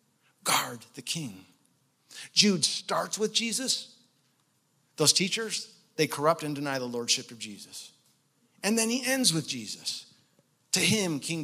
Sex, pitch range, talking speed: male, 140-190 Hz, 135 wpm